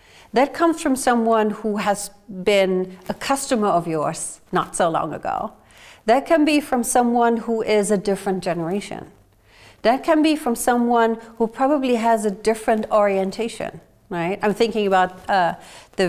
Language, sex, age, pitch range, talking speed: English, female, 40-59, 175-230 Hz, 155 wpm